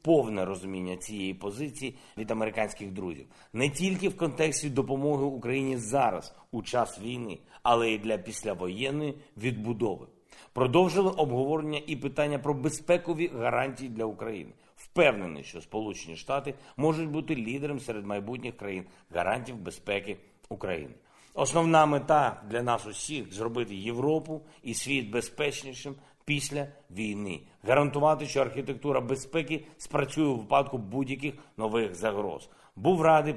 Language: Ukrainian